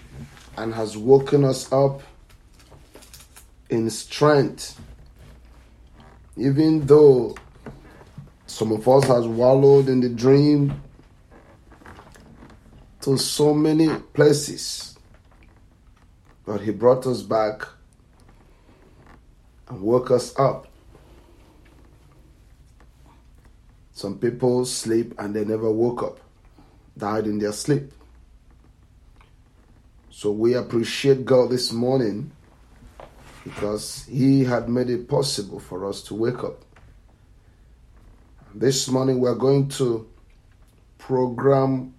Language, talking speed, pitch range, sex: English, 95 wpm, 105-130 Hz, male